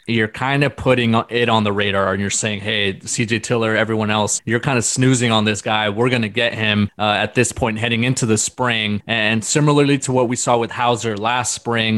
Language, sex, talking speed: English, male, 225 wpm